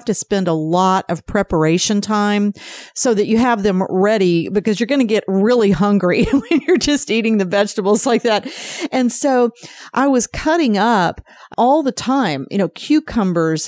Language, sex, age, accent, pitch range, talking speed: English, female, 40-59, American, 185-245 Hz, 175 wpm